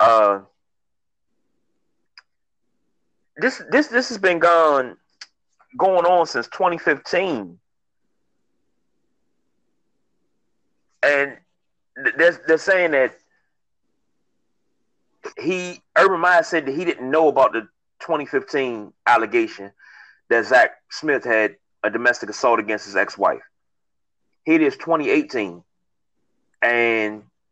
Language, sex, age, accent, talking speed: English, male, 30-49, American, 100 wpm